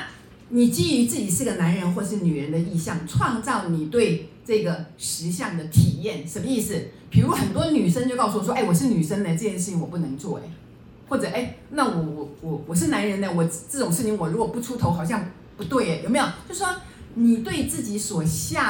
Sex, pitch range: female, 165-245 Hz